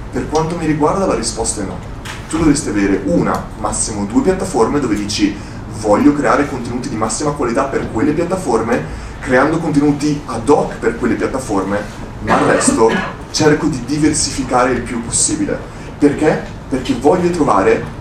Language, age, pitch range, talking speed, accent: Italian, 30-49, 115-155 Hz, 155 wpm, native